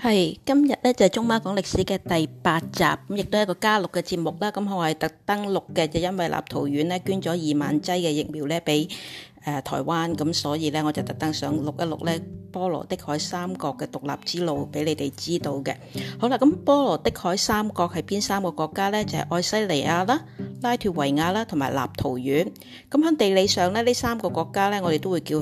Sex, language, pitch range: female, Chinese, 150-200 Hz